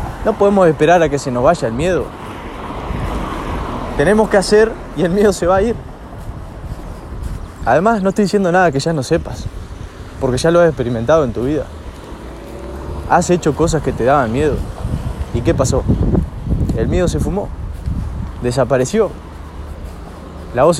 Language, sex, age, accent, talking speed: Spanish, male, 20-39, Argentinian, 155 wpm